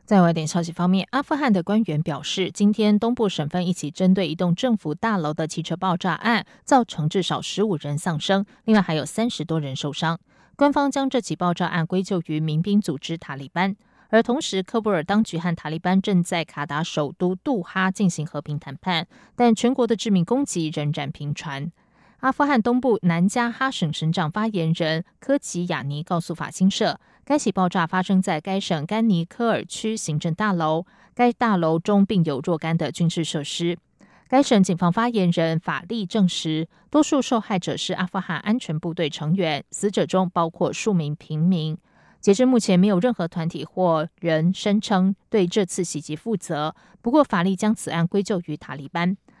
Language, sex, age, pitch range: German, female, 20-39, 165-215 Hz